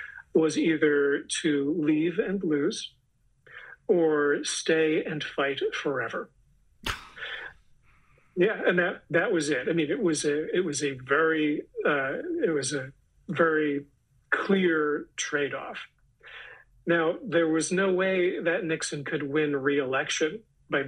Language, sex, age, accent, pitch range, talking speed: English, male, 40-59, American, 140-170 Hz, 130 wpm